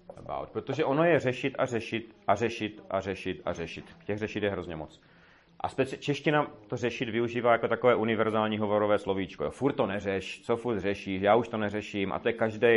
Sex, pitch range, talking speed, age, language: male, 95-125 Hz, 195 wpm, 30-49, Czech